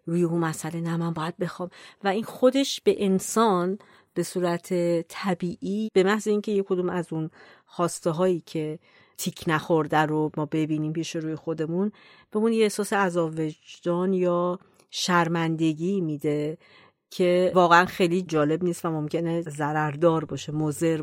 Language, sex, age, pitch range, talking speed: Persian, female, 40-59, 160-200 Hz, 145 wpm